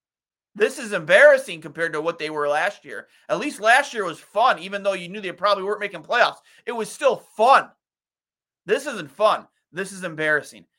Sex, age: male, 30-49